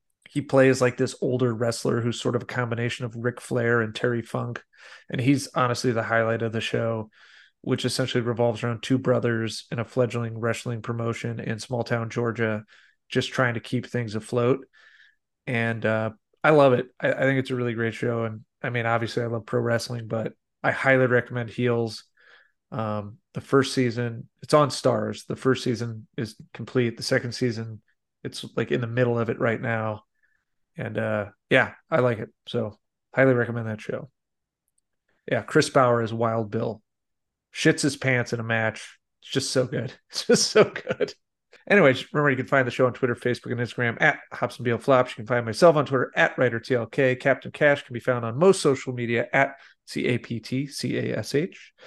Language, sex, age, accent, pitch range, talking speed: English, male, 30-49, American, 115-130 Hz, 190 wpm